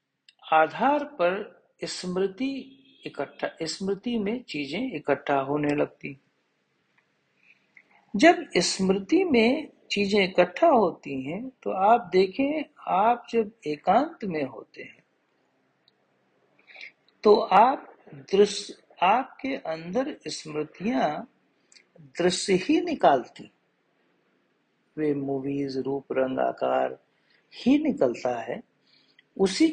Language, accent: Hindi, native